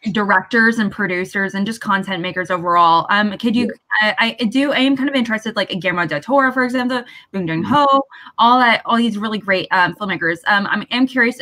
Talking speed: 210 wpm